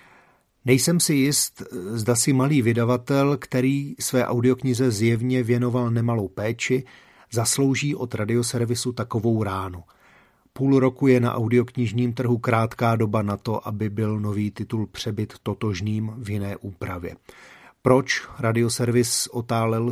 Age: 40-59